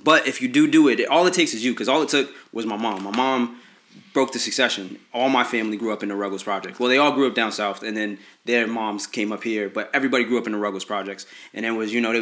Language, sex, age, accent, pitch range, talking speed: English, male, 20-39, American, 110-130 Hz, 300 wpm